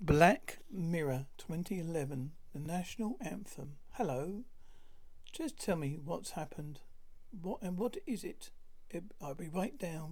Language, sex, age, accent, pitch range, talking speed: English, male, 60-79, British, 155-195 Hz, 130 wpm